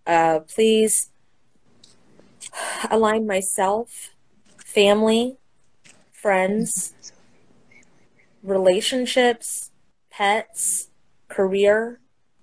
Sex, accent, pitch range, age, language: female, American, 185-225 Hz, 30-49, English